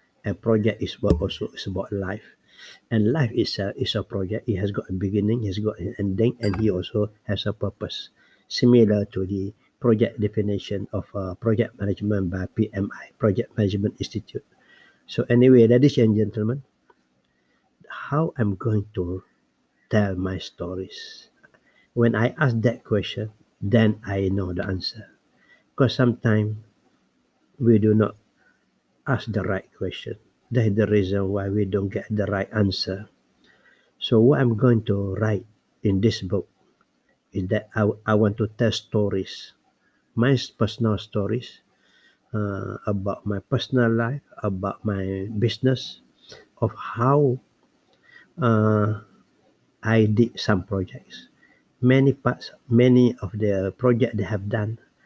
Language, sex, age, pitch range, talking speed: English, male, 60-79, 100-115 Hz, 140 wpm